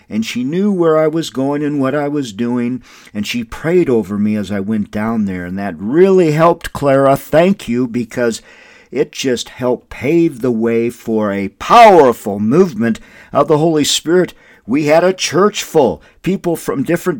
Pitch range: 110-150 Hz